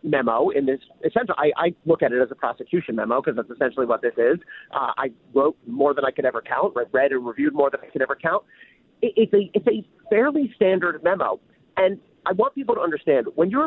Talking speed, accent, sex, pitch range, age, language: 230 wpm, American, male, 140-205 Hz, 40-59, English